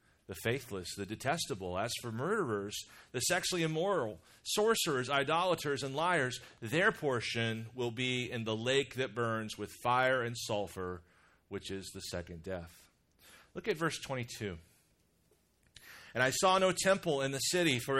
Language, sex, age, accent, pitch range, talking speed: English, male, 40-59, American, 110-150 Hz, 150 wpm